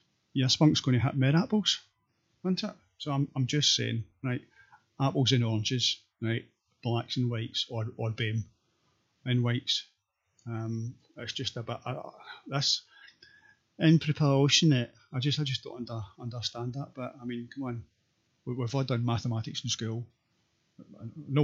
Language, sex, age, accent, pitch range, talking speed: English, male, 30-49, British, 115-135 Hz, 155 wpm